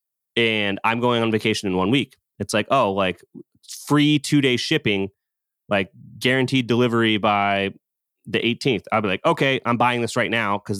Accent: American